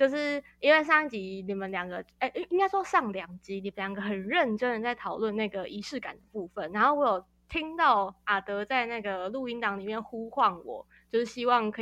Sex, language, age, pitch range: female, Chinese, 20-39, 200-265 Hz